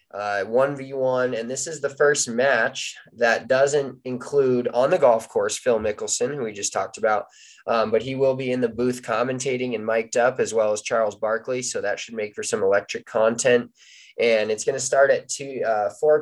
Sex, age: male, 20-39